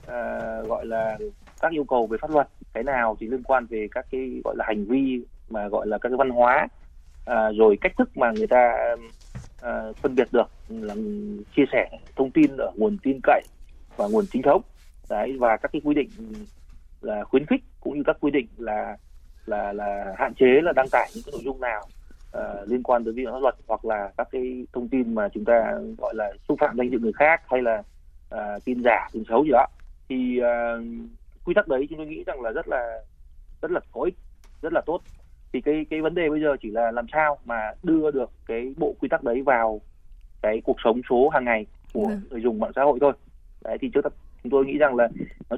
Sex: male